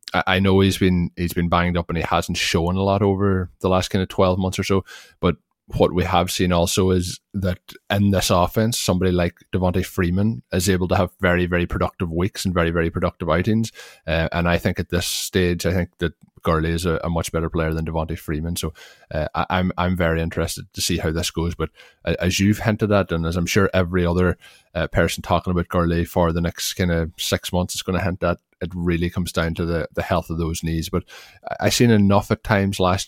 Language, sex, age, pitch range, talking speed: English, male, 20-39, 85-95 Hz, 235 wpm